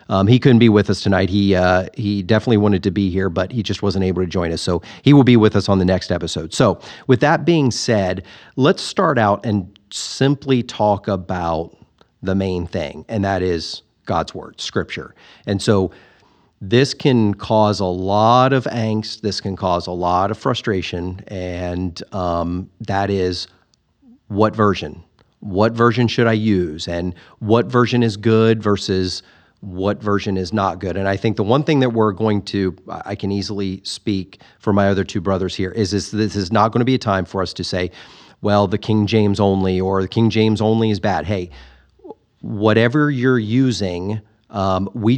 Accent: American